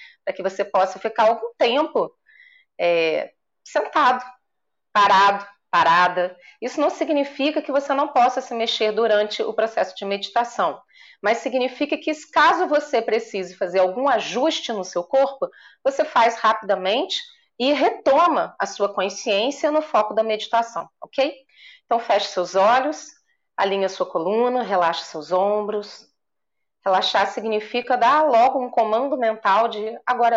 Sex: female